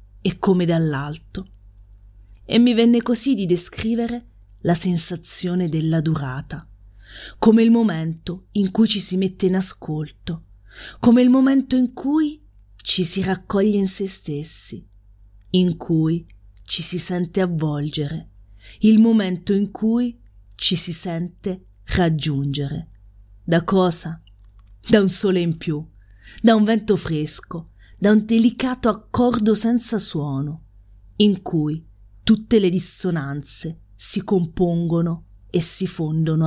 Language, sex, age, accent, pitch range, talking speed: Italian, female, 30-49, native, 140-195 Hz, 120 wpm